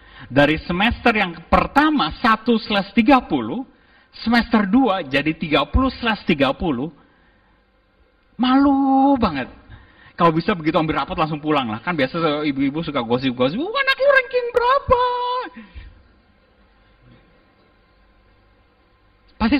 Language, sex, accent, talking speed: Indonesian, male, native, 100 wpm